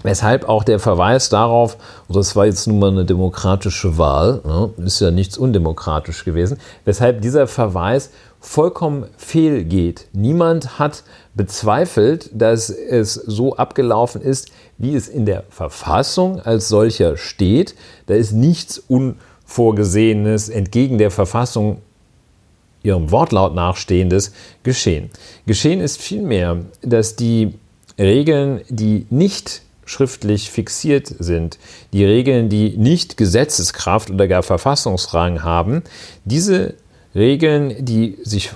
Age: 40-59